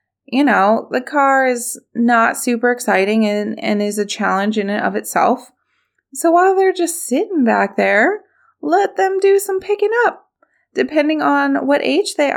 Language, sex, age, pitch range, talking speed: English, female, 20-39, 215-260 Hz, 170 wpm